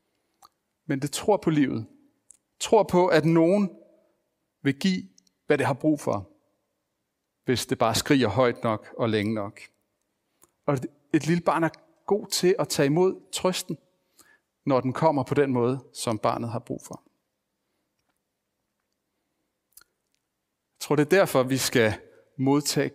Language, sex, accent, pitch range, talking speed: Danish, male, native, 115-155 Hz, 145 wpm